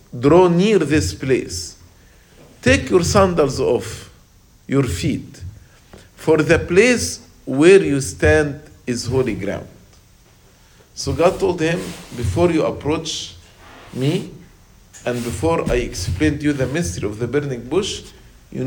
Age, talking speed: 50-69, 130 wpm